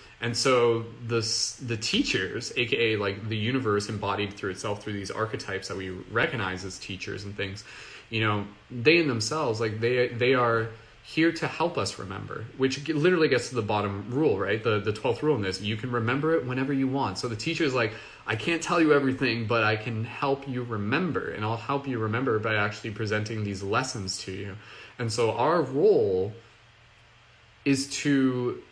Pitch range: 105-130 Hz